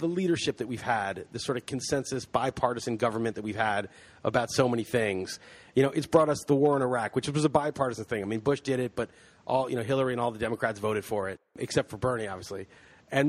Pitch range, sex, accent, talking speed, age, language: 115-145 Hz, male, American, 245 wpm, 30-49, English